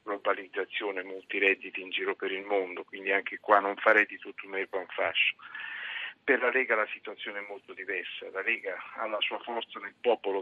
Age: 50-69